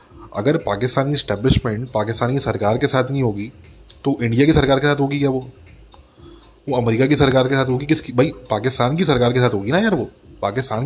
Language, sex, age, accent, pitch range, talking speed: English, male, 20-39, Indian, 115-150 Hz, 205 wpm